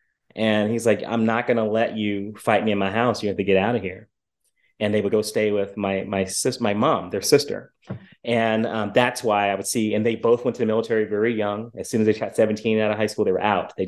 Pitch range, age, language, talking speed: 100-115 Hz, 30-49, English, 275 wpm